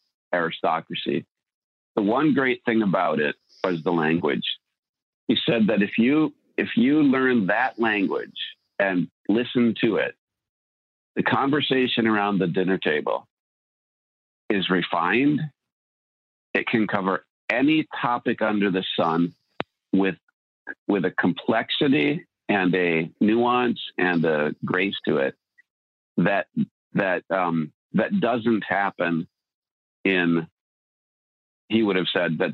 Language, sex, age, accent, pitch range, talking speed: English, male, 50-69, American, 85-120 Hz, 120 wpm